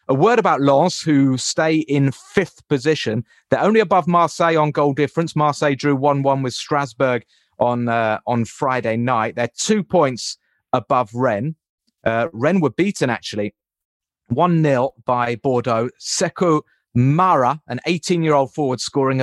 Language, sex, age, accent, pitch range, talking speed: English, male, 30-49, British, 120-150 Hz, 140 wpm